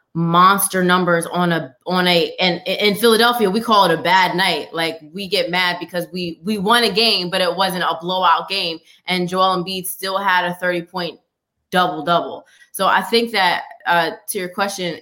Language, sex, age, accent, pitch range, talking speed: English, female, 20-39, American, 175-200 Hz, 195 wpm